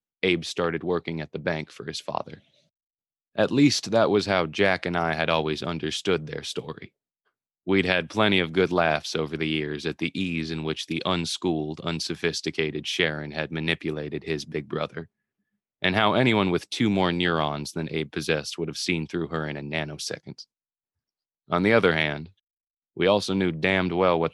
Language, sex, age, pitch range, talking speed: English, male, 20-39, 80-90 Hz, 180 wpm